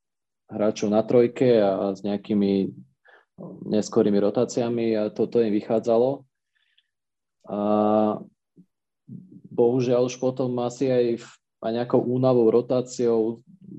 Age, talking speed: 20-39, 100 wpm